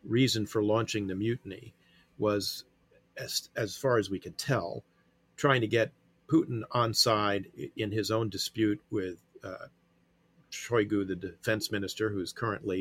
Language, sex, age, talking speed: English, male, 40-59, 145 wpm